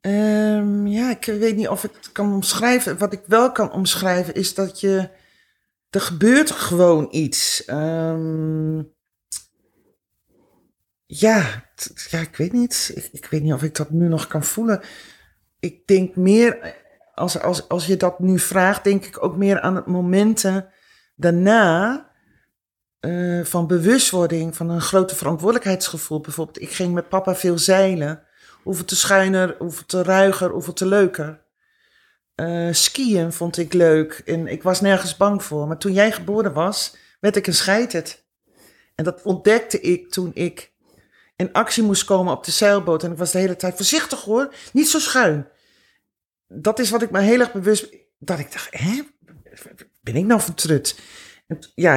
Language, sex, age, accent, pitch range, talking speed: Dutch, male, 40-59, Dutch, 165-205 Hz, 165 wpm